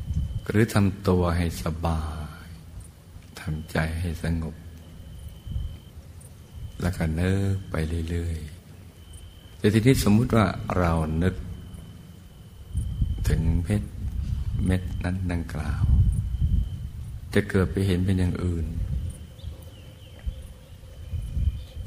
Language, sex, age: Thai, male, 60-79